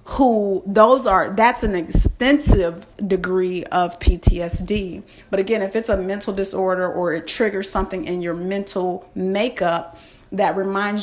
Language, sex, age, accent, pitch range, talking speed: English, female, 30-49, American, 185-245 Hz, 140 wpm